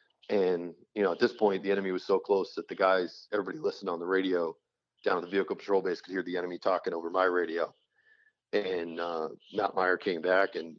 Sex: male